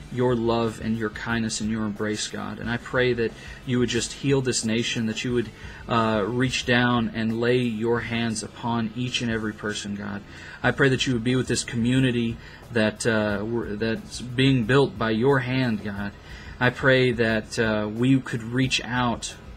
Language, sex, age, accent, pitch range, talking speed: English, male, 40-59, American, 110-125 Hz, 185 wpm